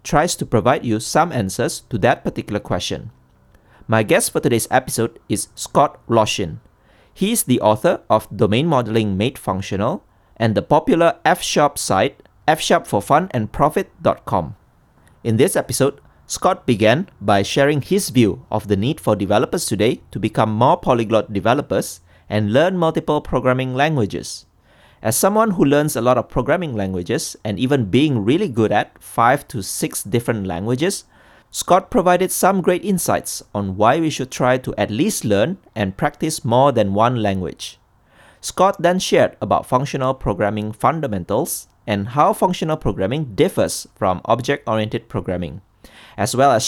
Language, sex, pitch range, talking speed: English, male, 105-145 Hz, 150 wpm